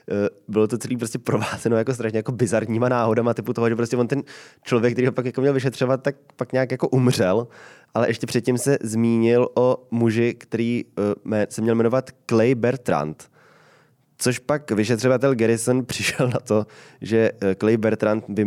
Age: 20-39